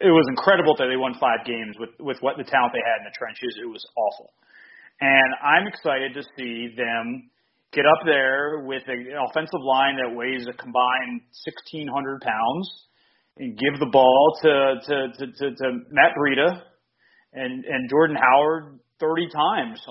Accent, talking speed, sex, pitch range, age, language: American, 170 wpm, male, 125-160 Hz, 30-49, English